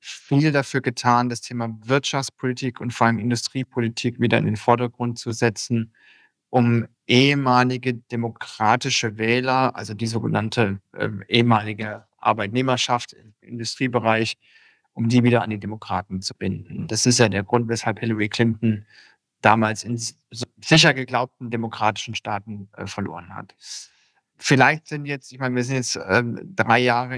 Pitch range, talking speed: 115-130 Hz, 135 wpm